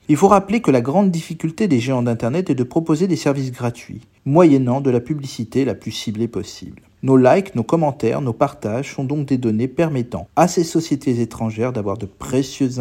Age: 40-59